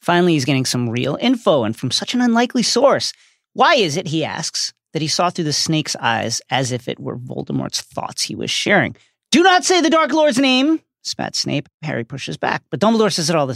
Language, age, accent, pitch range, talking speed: English, 40-59, American, 130-185 Hz, 225 wpm